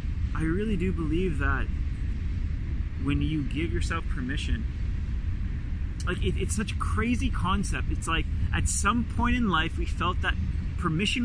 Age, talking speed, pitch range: 30-49, 150 wpm, 80-90 Hz